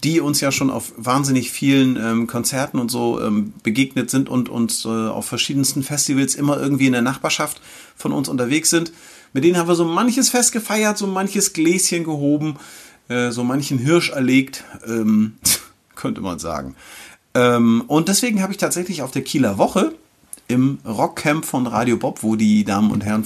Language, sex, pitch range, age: German, male, 120-155 Hz, 40-59